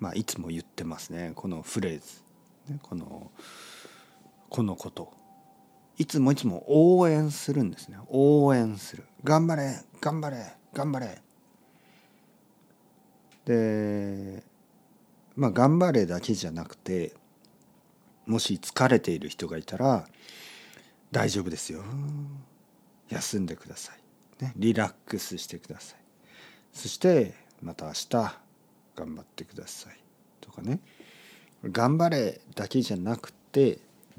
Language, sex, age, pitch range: Japanese, male, 50-69, 100-150 Hz